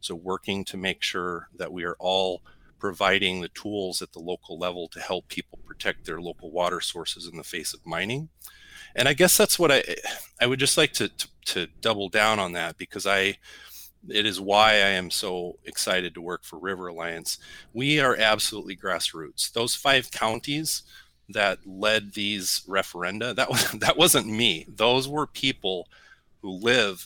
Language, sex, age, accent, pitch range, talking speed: English, male, 40-59, American, 95-125 Hz, 180 wpm